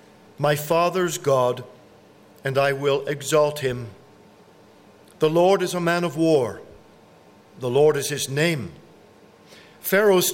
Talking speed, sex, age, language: 120 wpm, male, 50-69, English